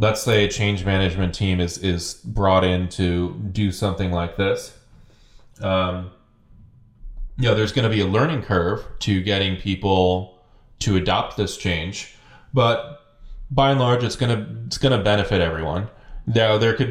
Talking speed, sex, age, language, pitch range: 165 wpm, male, 20-39, English, 90-110 Hz